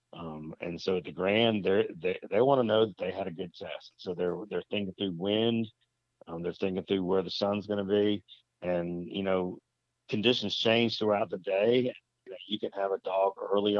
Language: English